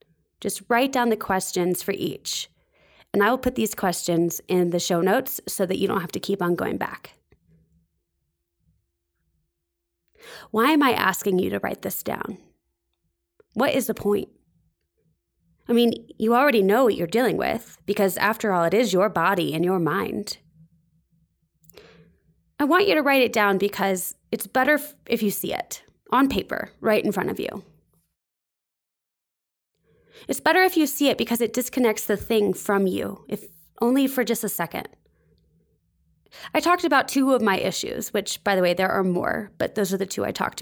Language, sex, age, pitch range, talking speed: English, female, 20-39, 165-245 Hz, 175 wpm